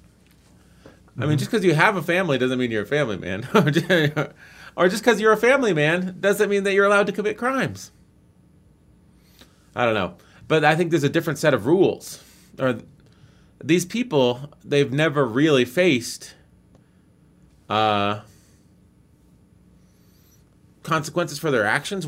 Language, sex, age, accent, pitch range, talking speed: English, male, 30-49, American, 120-190 Hz, 140 wpm